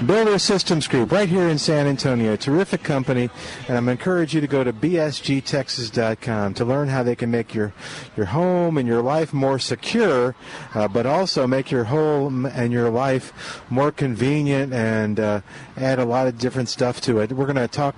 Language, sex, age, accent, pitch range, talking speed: English, male, 50-69, American, 115-140 Hz, 195 wpm